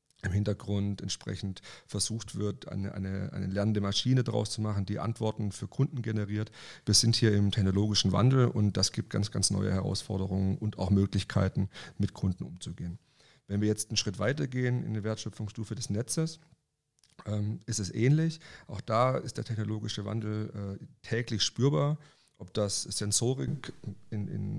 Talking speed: 160 wpm